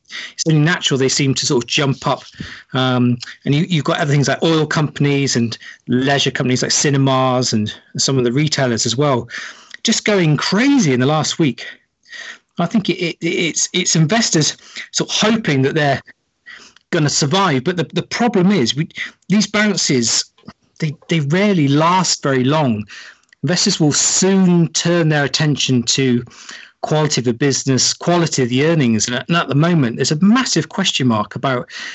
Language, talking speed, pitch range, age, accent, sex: English, 180 wpm, 130-170 Hz, 40-59, British, male